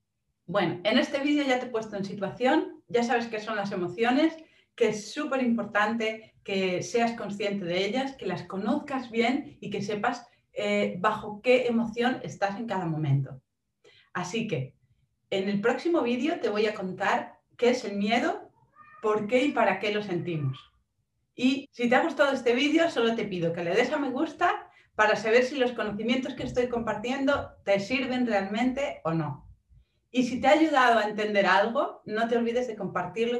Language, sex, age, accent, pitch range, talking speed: Spanish, female, 40-59, Spanish, 190-250 Hz, 185 wpm